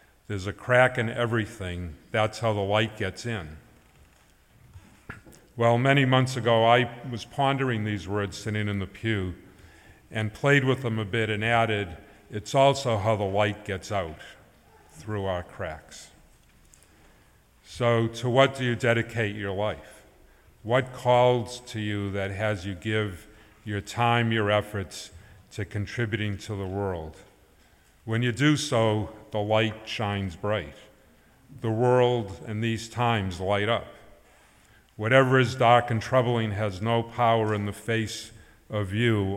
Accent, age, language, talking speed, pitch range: American, 50-69, English, 145 wpm, 100-120 Hz